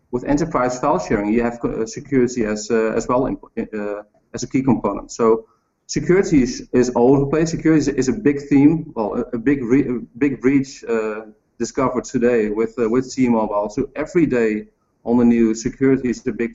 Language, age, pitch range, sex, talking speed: English, 30-49, 115-145 Hz, male, 190 wpm